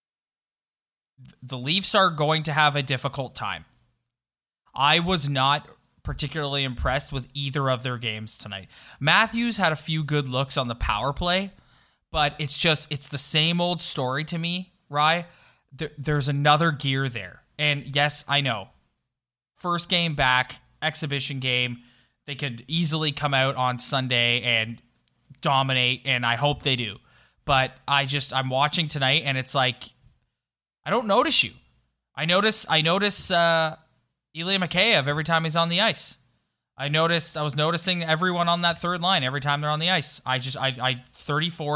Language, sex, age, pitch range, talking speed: English, male, 20-39, 130-155 Hz, 165 wpm